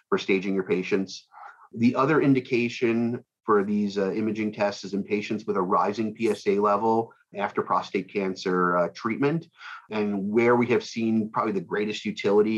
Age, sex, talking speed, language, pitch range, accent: 30-49, male, 160 wpm, English, 95-115 Hz, American